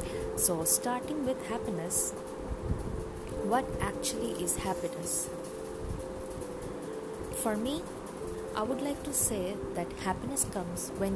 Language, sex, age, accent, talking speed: English, female, 20-39, Indian, 100 wpm